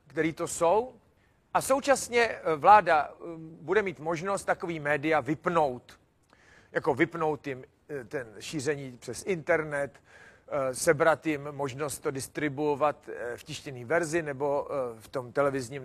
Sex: male